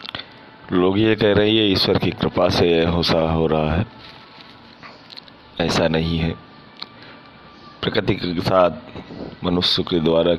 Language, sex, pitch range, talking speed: Hindi, male, 85-105 Hz, 120 wpm